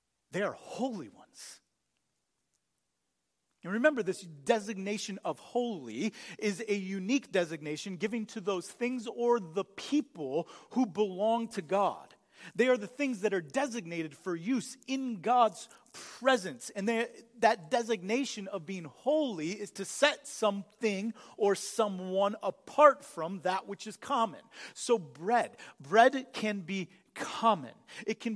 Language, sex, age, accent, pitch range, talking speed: English, male, 40-59, American, 160-230 Hz, 135 wpm